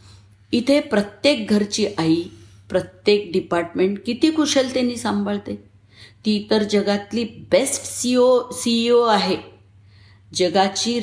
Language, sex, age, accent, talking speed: Marathi, female, 50-69, native, 90 wpm